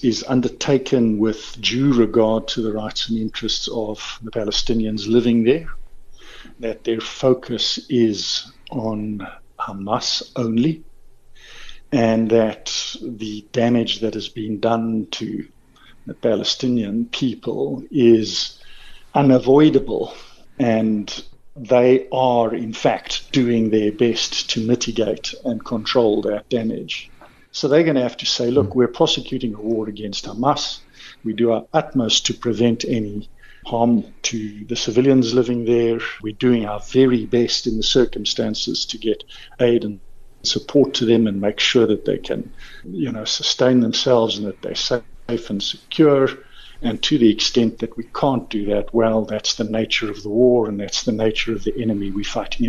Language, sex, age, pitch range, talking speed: English, male, 50-69, 110-125 Hz, 150 wpm